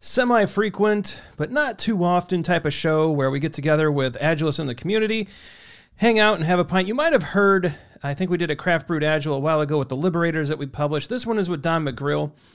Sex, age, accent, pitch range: male, 40-59, American, 145-185 Hz